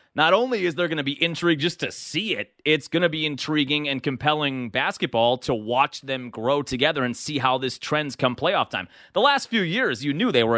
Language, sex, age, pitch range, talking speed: English, male, 30-49, 120-160 Hz, 235 wpm